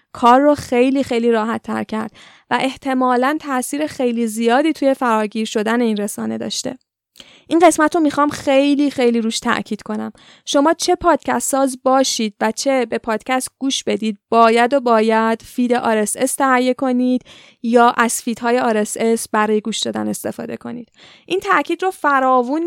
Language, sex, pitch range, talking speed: Persian, female, 230-285 Hz, 155 wpm